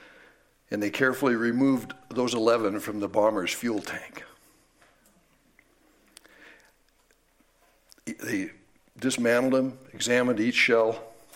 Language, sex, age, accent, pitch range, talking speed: English, male, 60-79, American, 120-175 Hz, 90 wpm